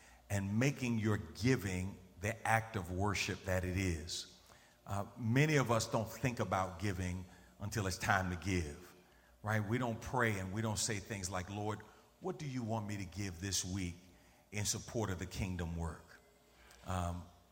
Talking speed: 175 wpm